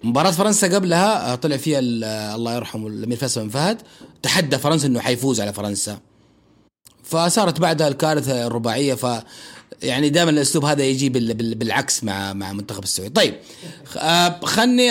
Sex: male